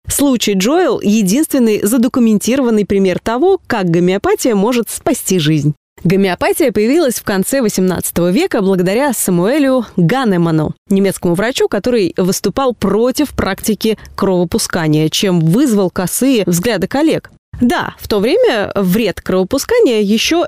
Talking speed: 115 wpm